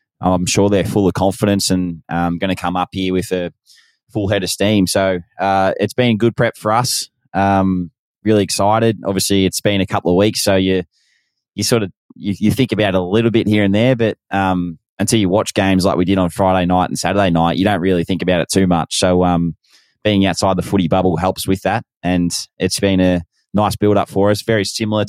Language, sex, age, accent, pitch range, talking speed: English, male, 20-39, Australian, 90-100 Hz, 230 wpm